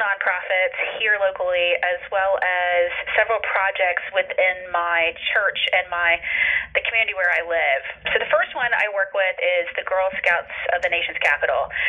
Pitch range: 180-260 Hz